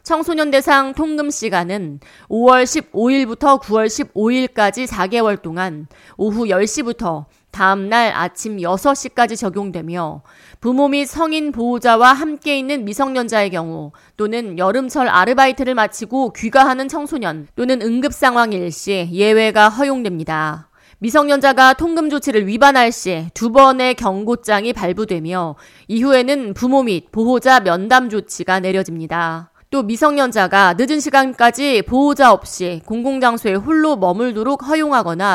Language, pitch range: Korean, 190-270 Hz